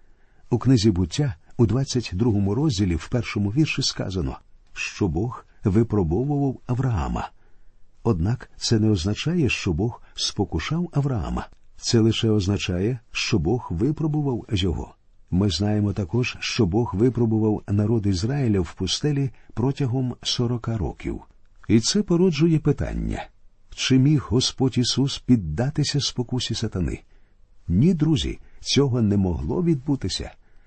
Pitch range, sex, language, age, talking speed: 100-135 Hz, male, Ukrainian, 50-69, 115 wpm